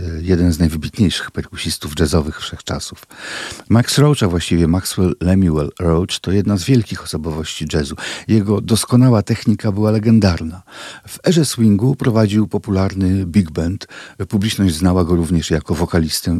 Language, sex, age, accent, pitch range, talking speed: Polish, male, 50-69, native, 90-120 Hz, 135 wpm